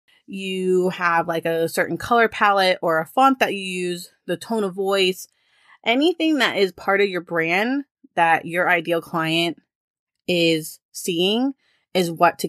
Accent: American